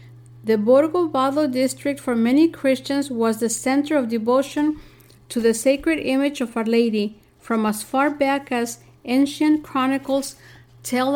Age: 50-69